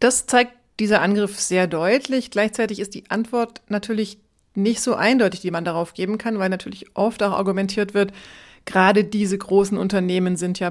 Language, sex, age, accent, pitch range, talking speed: German, female, 30-49, German, 180-205 Hz, 175 wpm